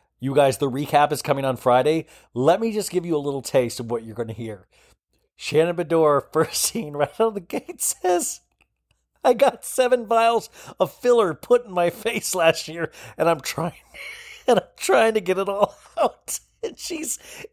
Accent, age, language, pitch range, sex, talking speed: American, 40-59, English, 125-195 Hz, male, 195 wpm